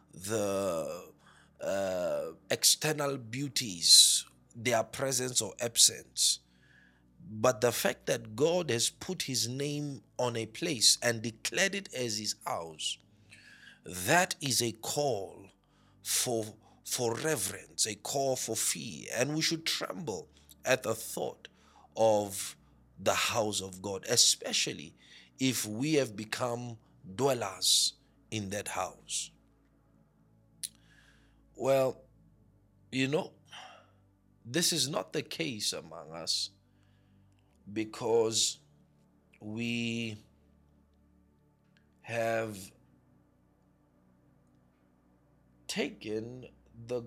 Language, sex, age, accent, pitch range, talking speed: English, male, 50-69, South African, 95-125 Hz, 95 wpm